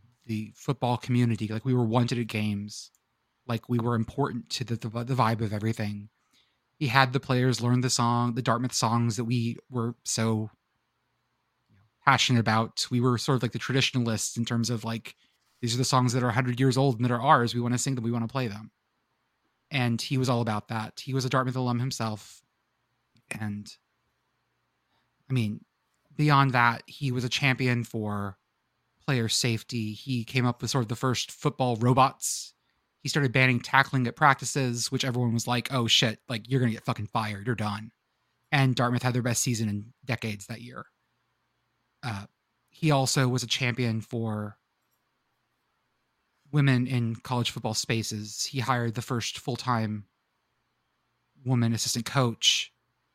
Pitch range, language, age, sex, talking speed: 115-130 Hz, English, 20-39, male, 175 wpm